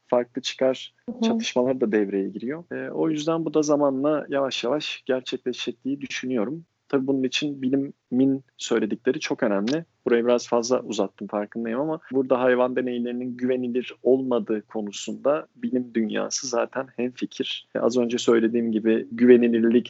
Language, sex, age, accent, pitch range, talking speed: Turkish, male, 40-59, native, 110-130 Hz, 135 wpm